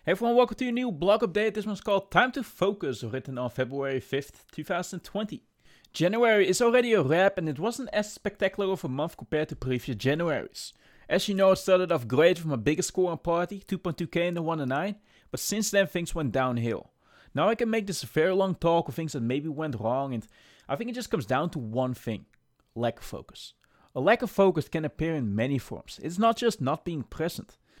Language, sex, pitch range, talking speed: English, male, 145-200 Hz, 220 wpm